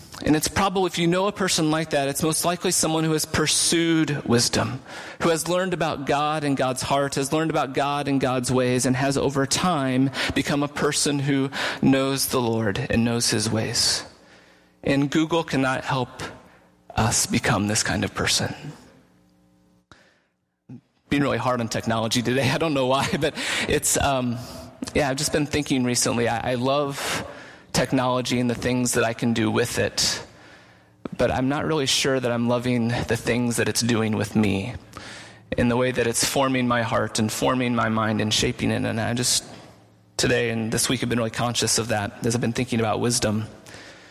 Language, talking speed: English, 190 wpm